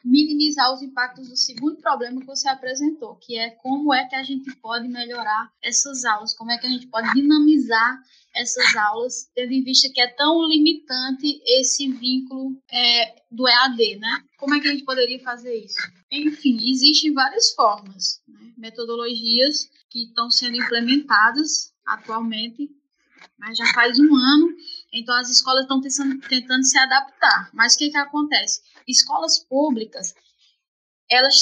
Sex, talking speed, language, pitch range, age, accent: female, 155 wpm, Portuguese, 235-285 Hz, 10-29, Brazilian